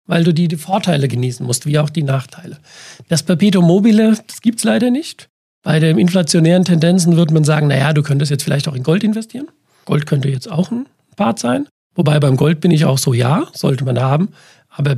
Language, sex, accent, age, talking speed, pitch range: German, male, German, 40-59, 210 wpm, 150-195 Hz